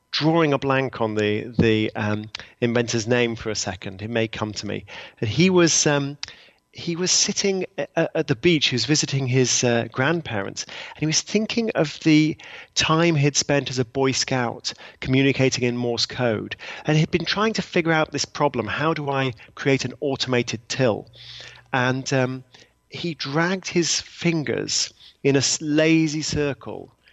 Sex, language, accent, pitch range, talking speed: male, English, British, 115-150 Hz, 170 wpm